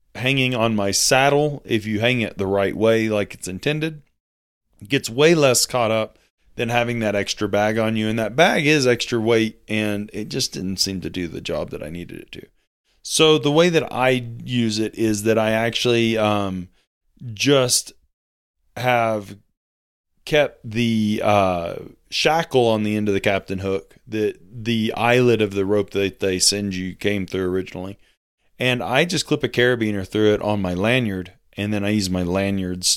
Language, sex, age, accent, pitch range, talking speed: English, male, 30-49, American, 100-120 Hz, 185 wpm